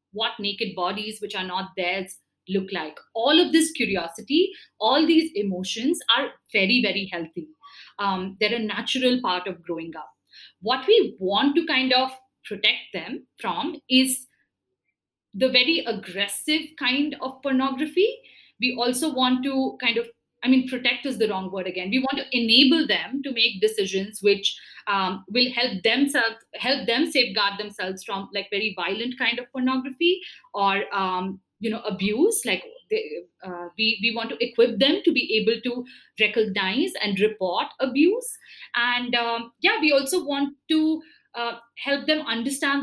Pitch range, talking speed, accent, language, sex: 200-270 Hz, 160 wpm, Indian, English, female